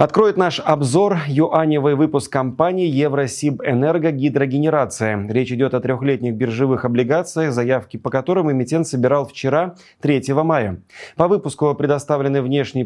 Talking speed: 125 wpm